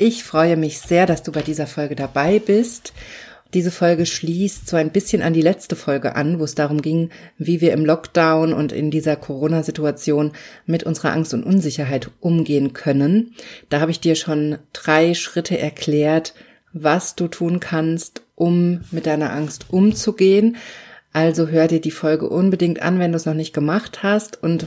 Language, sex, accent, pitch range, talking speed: German, female, German, 150-175 Hz, 180 wpm